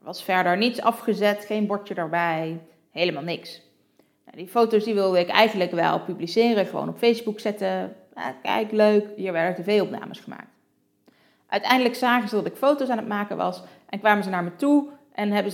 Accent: Dutch